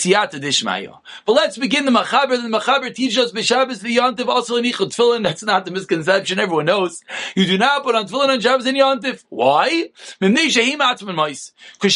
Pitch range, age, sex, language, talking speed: 195-265 Hz, 30-49, male, English, 145 wpm